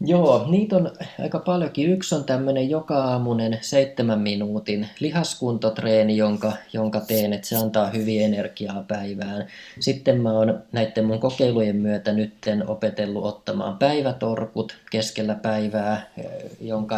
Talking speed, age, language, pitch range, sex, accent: 125 wpm, 20-39, Finnish, 105-125 Hz, male, native